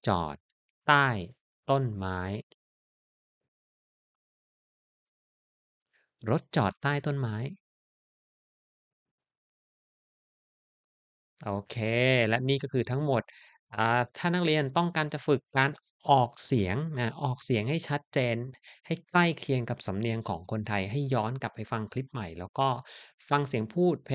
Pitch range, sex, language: 100-130 Hz, male, Thai